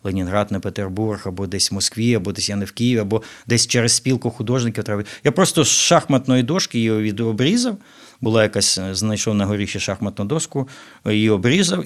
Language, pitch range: Ukrainian, 95-125 Hz